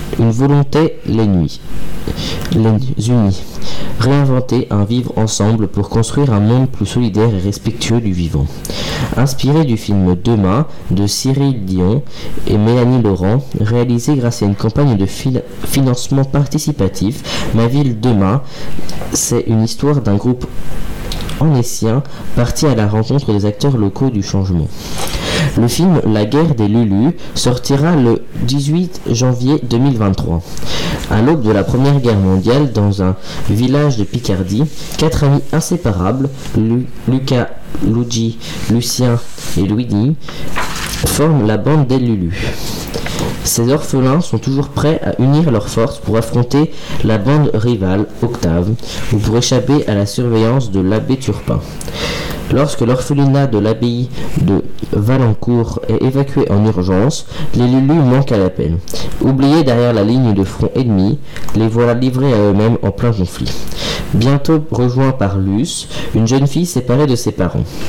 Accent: French